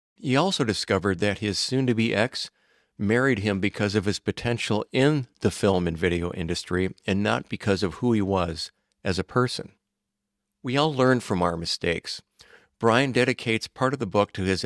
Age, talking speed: 50-69, 175 wpm